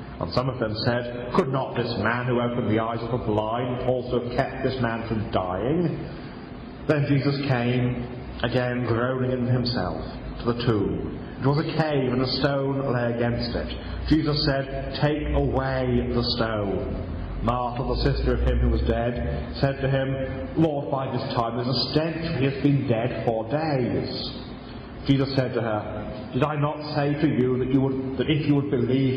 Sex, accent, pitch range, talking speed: male, British, 115-140 Hz, 185 wpm